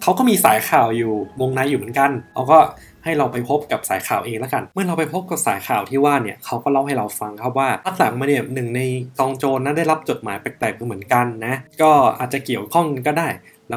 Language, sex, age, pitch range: Thai, male, 20-39, 120-150 Hz